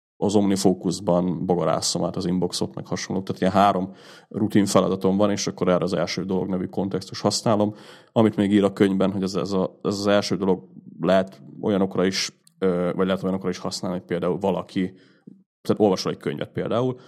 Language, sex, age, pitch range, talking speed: Hungarian, male, 30-49, 95-110 Hz, 180 wpm